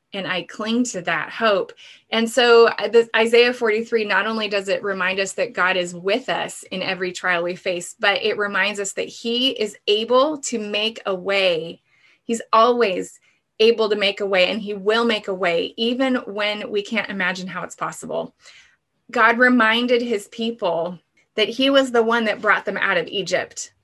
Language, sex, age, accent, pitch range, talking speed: English, female, 20-39, American, 195-235 Hz, 185 wpm